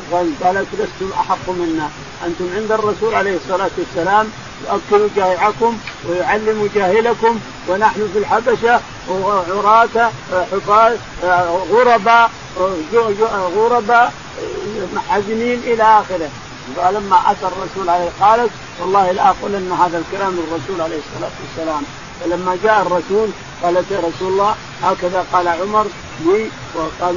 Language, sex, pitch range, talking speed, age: Arabic, male, 180-220 Hz, 115 wpm, 50-69